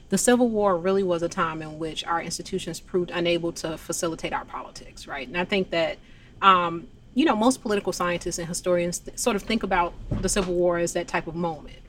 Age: 30-49